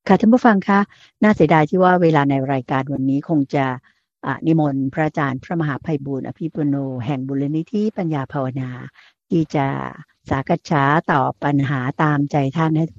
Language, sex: Thai, female